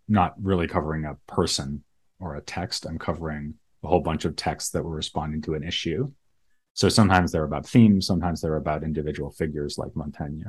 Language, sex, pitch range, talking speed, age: English, male, 80-100 Hz, 190 wpm, 30-49